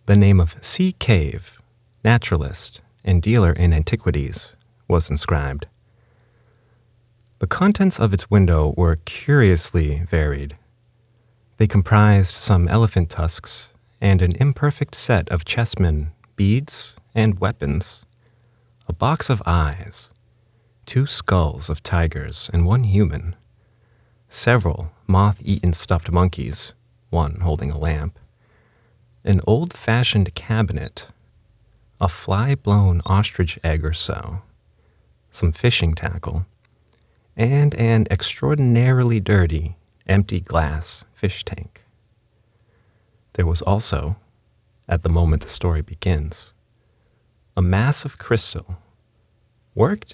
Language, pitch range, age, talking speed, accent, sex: English, 85-115 Hz, 40-59, 105 wpm, American, male